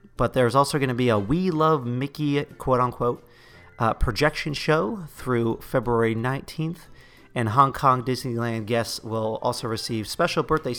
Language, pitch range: English, 115-135 Hz